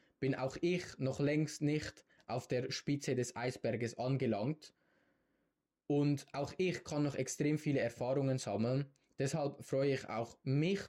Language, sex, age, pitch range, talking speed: German, male, 20-39, 125-145 Hz, 145 wpm